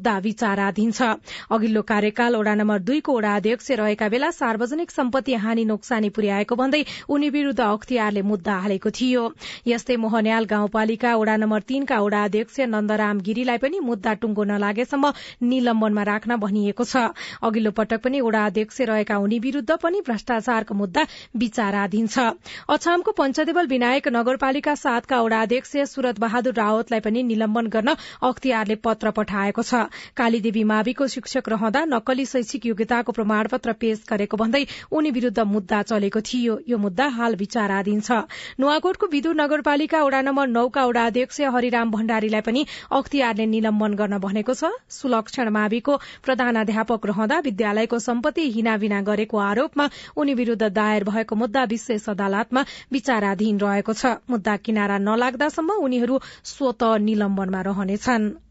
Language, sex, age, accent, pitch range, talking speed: English, female, 30-49, Indian, 215-260 Hz, 95 wpm